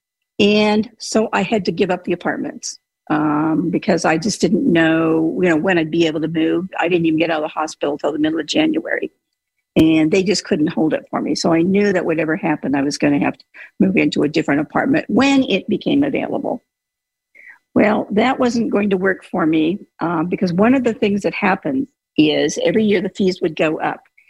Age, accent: 50-69, American